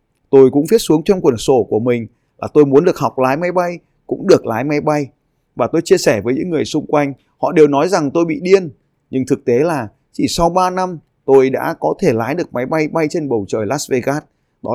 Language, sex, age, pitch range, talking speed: Vietnamese, male, 20-39, 125-165 Hz, 250 wpm